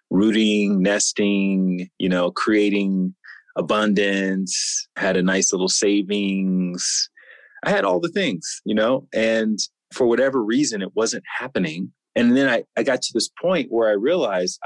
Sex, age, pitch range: male, 30-49, 95-115 Hz